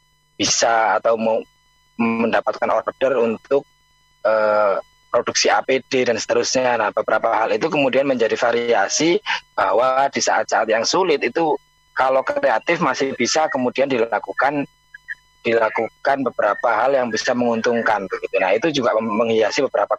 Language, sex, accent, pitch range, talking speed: Indonesian, male, native, 120-155 Hz, 125 wpm